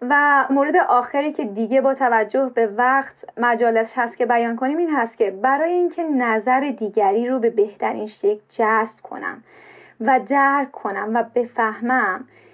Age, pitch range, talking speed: 30-49, 235-300 Hz, 155 wpm